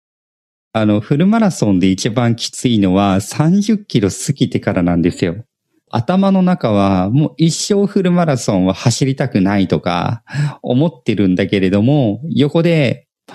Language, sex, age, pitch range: Japanese, male, 40-59, 100-160 Hz